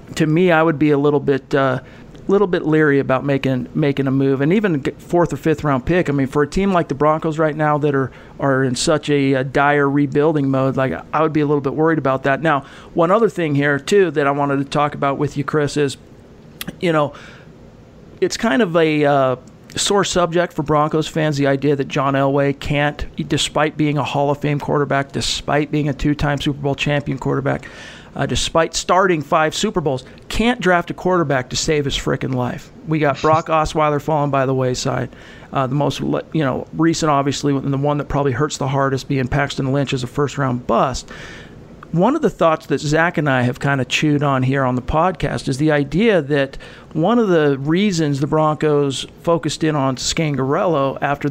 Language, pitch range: English, 135-160 Hz